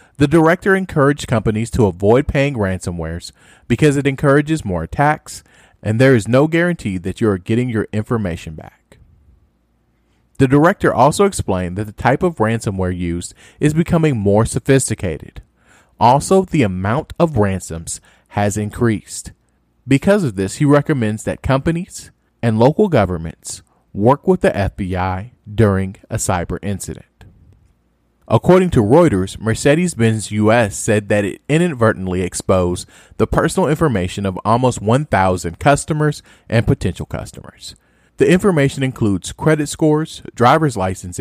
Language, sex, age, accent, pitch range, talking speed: English, male, 40-59, American, 95-145 Hz, 130 wpm